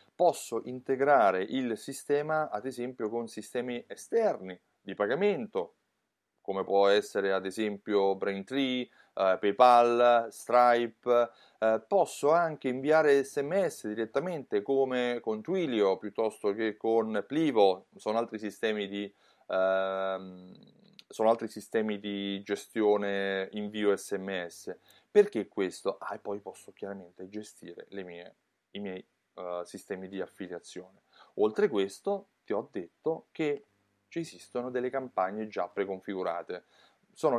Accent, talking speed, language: native, 115 wpm, Italian